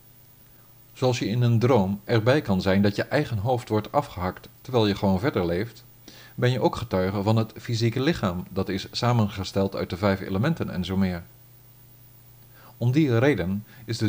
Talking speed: 180 wpm